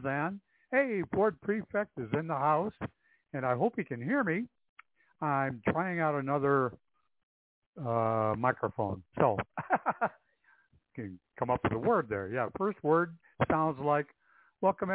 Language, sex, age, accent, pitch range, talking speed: English, male, 60-79, American, 120-165 Hz, 145 wpm